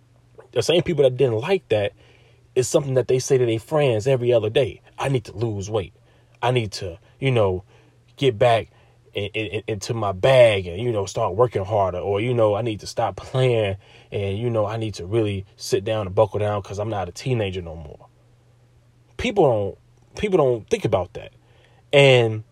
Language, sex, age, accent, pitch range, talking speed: English, male, 30-49, American, 110-130 Hz, 205 wpm